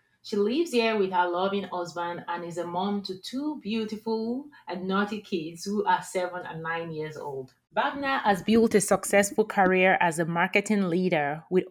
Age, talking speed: 30-49, 180 wpm